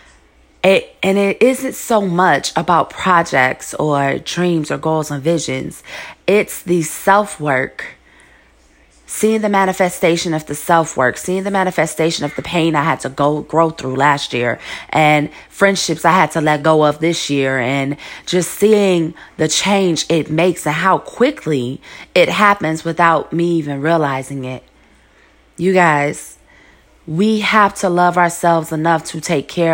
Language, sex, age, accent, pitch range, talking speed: English, female, 20-39, American, 145-185 Hz, 150 wpm